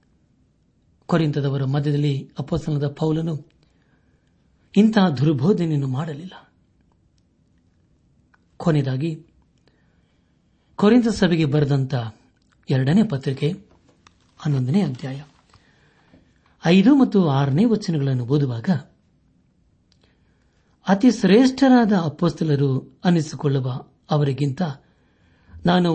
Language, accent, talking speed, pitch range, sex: Kannada, native, 60 wpm, 120-165 Hz, male